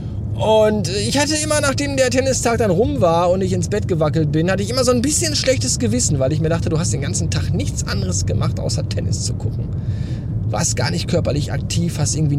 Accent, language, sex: German, German, male